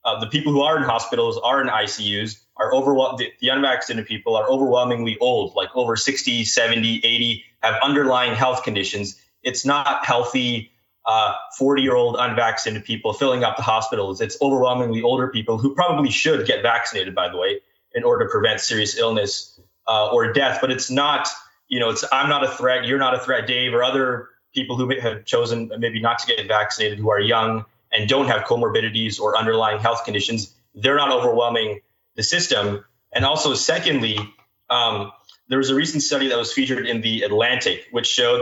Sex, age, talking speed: male, 20-39, 185 wpm